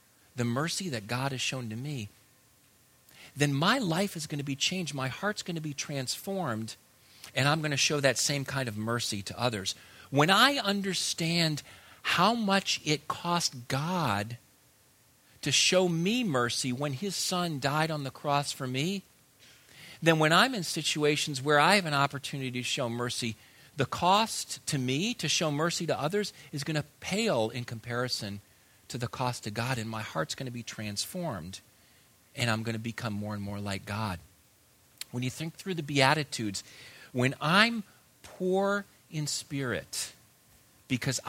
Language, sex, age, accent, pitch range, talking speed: English, male, 50-69, American, 120-165 Hz, 170 wpm